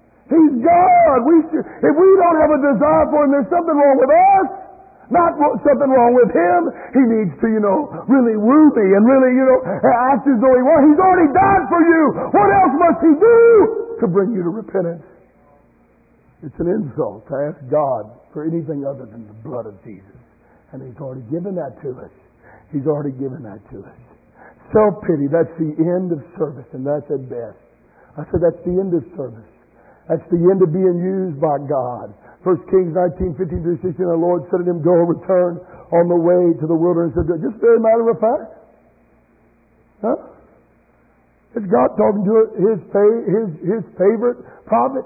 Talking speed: 190 wpm